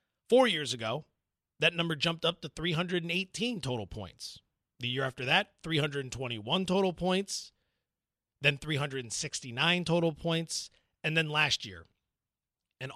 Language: English